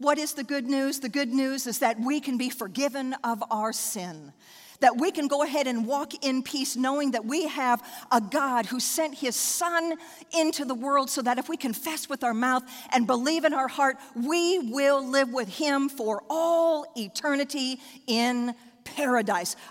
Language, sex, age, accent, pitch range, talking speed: English, female, 50-69, American, 230-285 Hz, 190 wpm